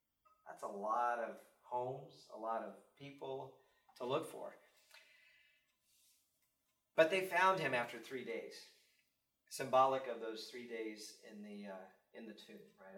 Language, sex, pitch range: English, male, 115-195 Hz